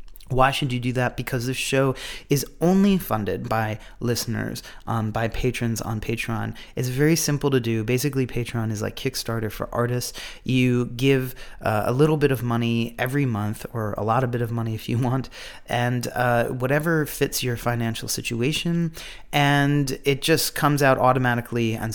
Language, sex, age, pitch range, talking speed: English, male, 30-49, 110-130 Hz, 175 wpm